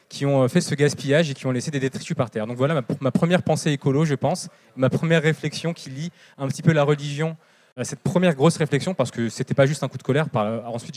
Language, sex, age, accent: French, male, 20-39, French